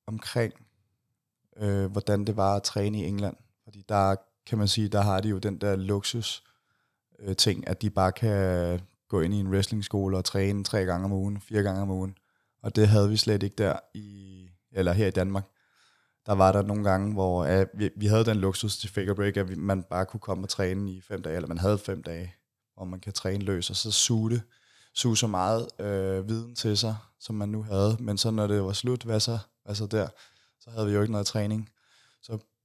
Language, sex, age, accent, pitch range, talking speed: Danish, male, 20-39, native, 95-110 Hz, 225 wpm